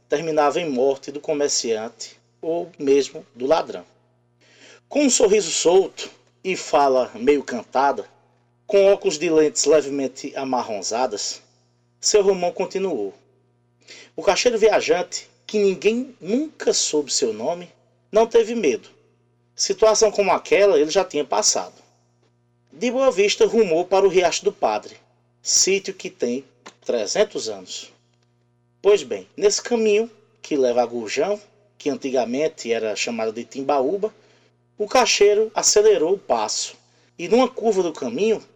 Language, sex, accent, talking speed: Portuguese, male, Brazilian, 130 wpm